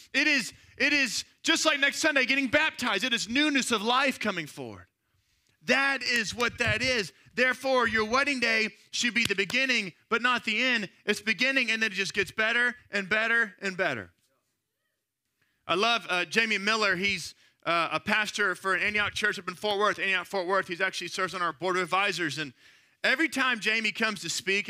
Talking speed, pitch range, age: 195 wpm, 185-260 Hz, 30-49